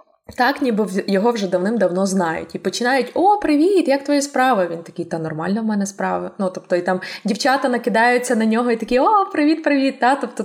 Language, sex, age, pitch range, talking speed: Ukrainian, female, 20-39, 185-260 Hz, 195 wpm